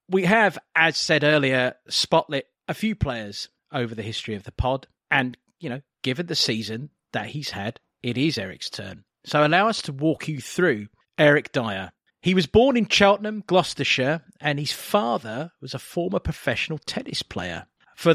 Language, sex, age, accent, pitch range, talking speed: English, male, 40-59, British, 120-165 Hz, 175 wpm